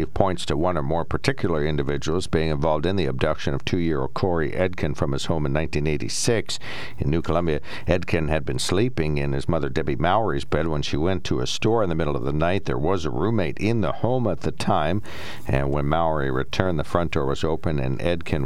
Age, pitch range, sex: 60-79, 70-90 Hz, male